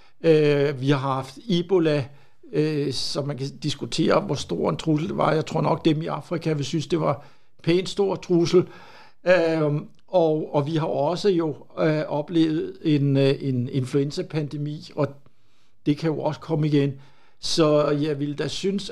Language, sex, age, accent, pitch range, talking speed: Danish, male, 60-79, native, 145-165 Hz, 150 wpm